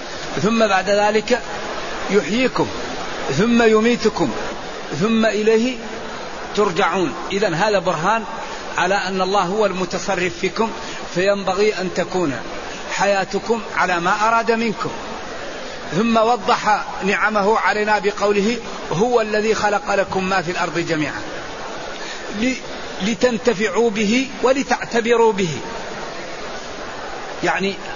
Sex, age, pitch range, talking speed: male, 40-59, 185-220 Hz, 95 wpm